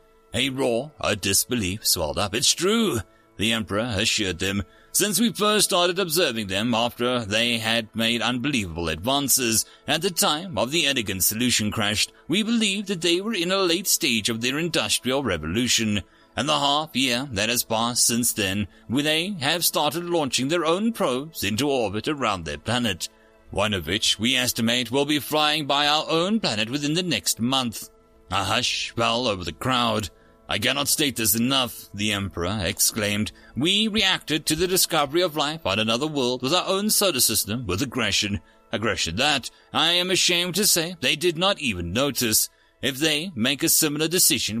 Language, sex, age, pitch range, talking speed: English, male, 30-49, 110-155 Hz, 175 wpm